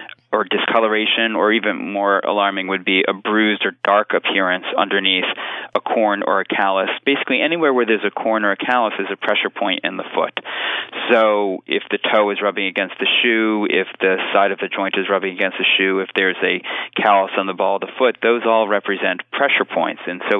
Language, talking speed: English, 210 wpm